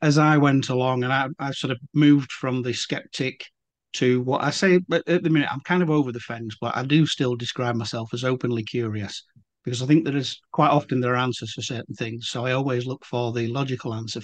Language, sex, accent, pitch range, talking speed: English, male, British, 120-140 Hz, 240 wpm